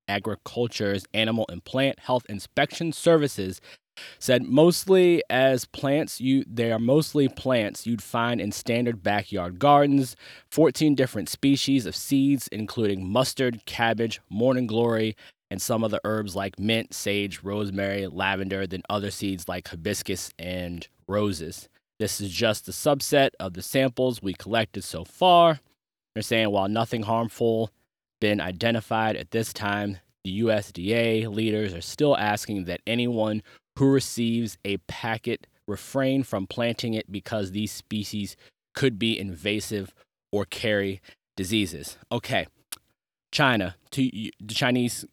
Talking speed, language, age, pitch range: 135 wpm, English, 20-39, 100-120 Hz